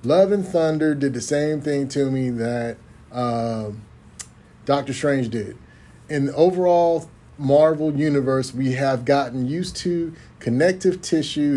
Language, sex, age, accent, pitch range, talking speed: English, male, 30-49, American, 120-150 Hz, 135 wpm